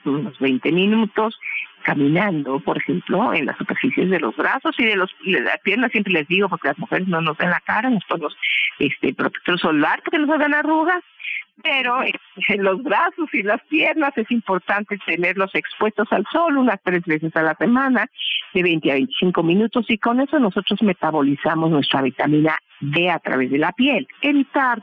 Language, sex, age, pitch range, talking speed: Spanish, female, 50-69, 165-245 Hz, 190 wpm